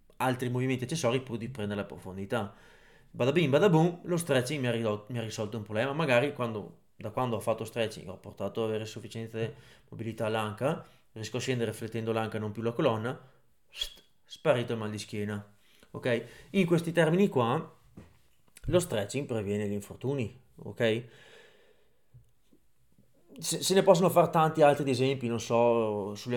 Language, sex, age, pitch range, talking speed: Italian, male, 20-39, 105-125 Hz, 155 wpm